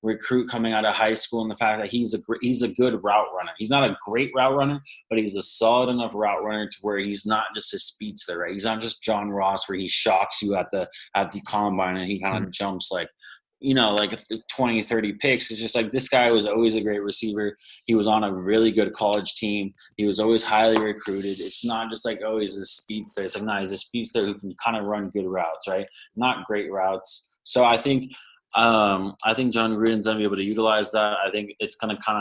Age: 20-39